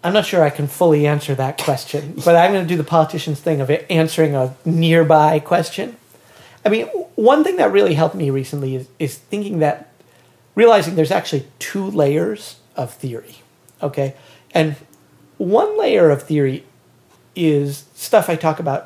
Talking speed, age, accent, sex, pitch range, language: 170 wpm, 40-59, American, male, 130-160 Hz, English